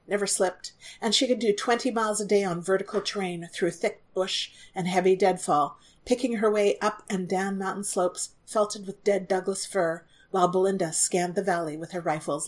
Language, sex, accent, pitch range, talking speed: English, female, American, 170-205 Hz, 190 wpm